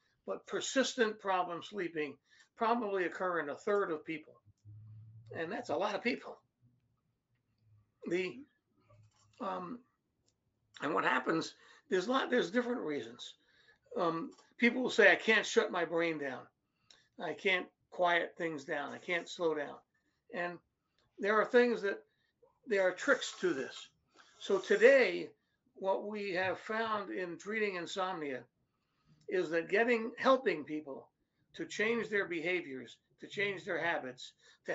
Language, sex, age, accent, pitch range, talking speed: English, male, 60-79, American, 165-225 Hz, 140 wpm